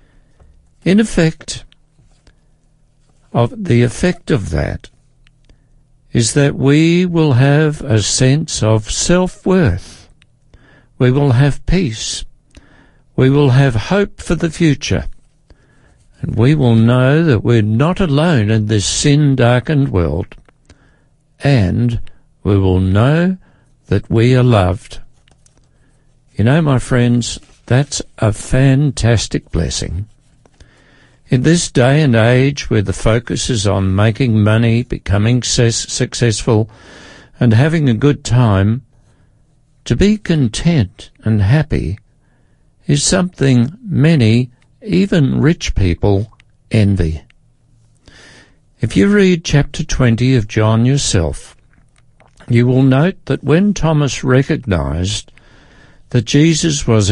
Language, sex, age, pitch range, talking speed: English, male, 60-79, 110-145 Hz, 110 wpm